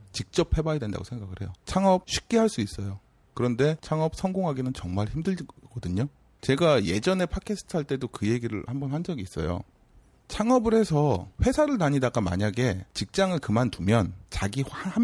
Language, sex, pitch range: Korean, male, 100-155 Hz